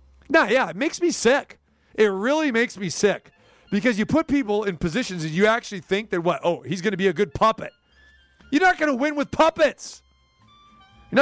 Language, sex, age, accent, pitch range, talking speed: English, male, 40-59, American, 185-280 Hz, 215 wpm